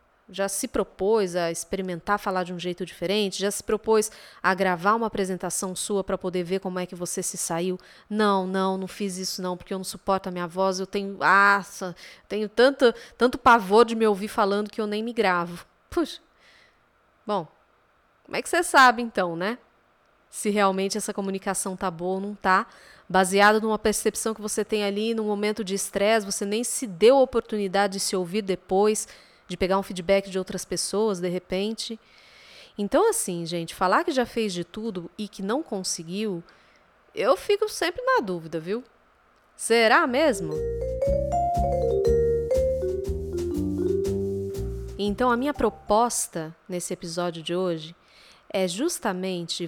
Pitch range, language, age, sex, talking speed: 185-225 Hz, Portuguese, 20-39, female, 160 wpm